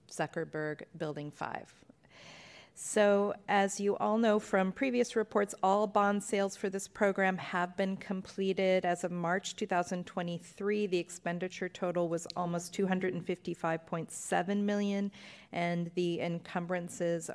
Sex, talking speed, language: female, 120 wpm, English